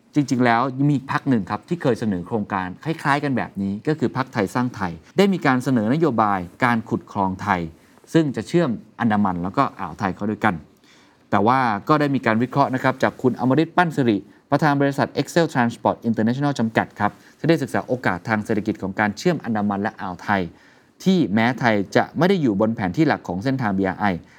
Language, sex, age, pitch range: Thai, male, 20-39, 105-140 Hz